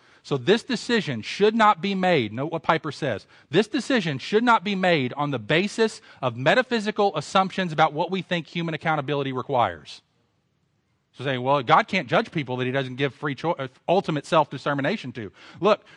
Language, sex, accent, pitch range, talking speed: English, male, American, 135-180 Hz, 180 wpm